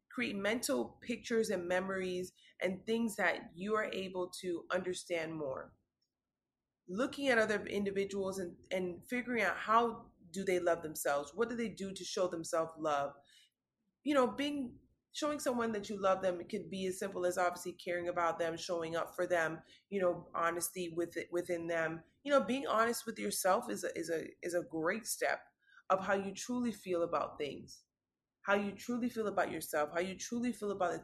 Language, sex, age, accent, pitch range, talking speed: English, female, 30-49, American, 175-220 Hz, 190 wpm